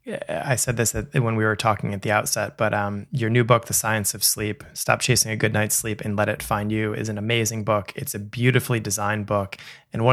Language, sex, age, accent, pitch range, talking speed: English, male, 20-39, American, 100-115 Hz, 250 wpm